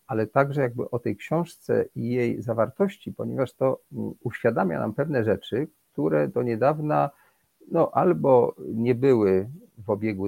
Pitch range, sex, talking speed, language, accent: 95-125 Hz, male, 140 wpm, Polish, native